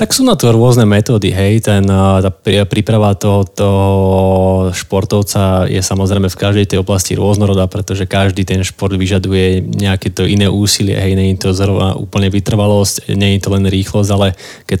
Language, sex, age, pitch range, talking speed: Slovak, male, 20-39, 95-105 Hz, 170 wpm